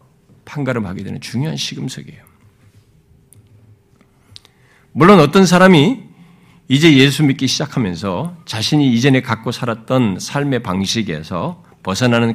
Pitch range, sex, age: 130-195 Hz, male, 50-69